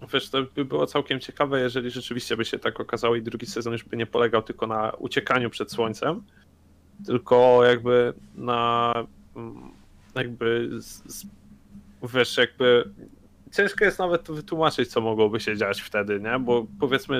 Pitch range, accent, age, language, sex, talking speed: 105-130 Hz, native, 20-39, Polish, male, 155 wpm